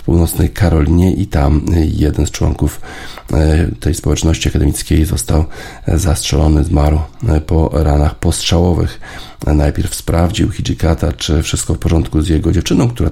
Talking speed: 130 wpm